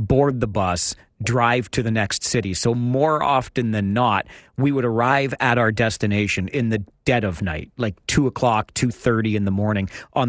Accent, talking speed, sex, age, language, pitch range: American, 185 wpm, male, 40-59, English, 105-125 Hz